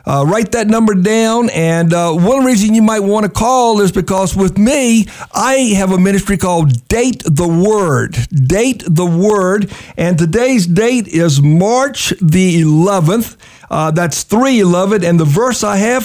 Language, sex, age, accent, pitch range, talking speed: English, male, 60-79, American, 170-220 Hz, 165 wpm